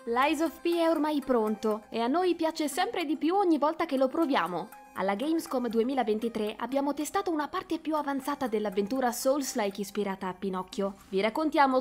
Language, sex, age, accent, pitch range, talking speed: Italian, female, 20-39, native, 205-275 Hz, 175 wpm